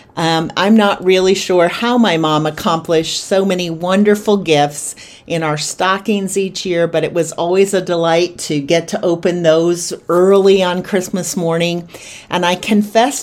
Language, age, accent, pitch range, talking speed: English, 40-59, American, 170-205 Hz, 165 wpm